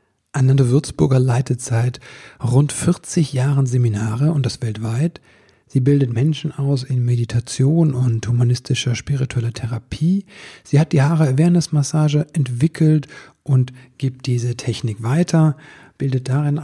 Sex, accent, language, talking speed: male, German, German, 125 wpm